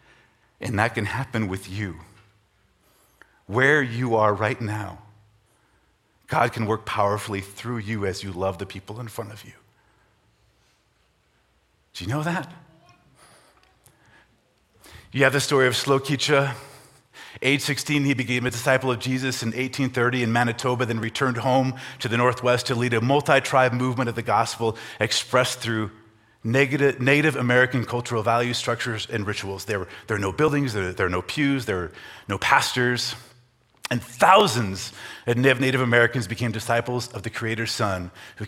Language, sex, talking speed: English, male, 155 wpm